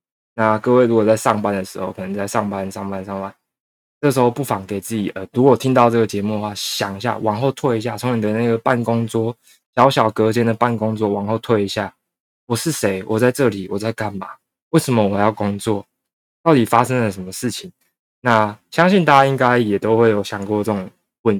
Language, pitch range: Chinese, 100-115 Hz